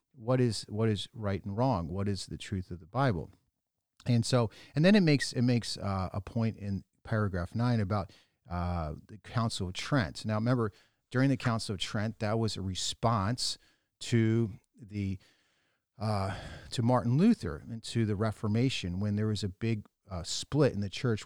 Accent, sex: American, male